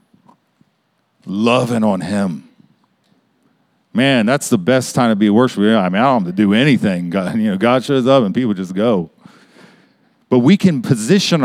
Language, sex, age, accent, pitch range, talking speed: English, male, 40-59, American, 140-190 Hz, 180 wpm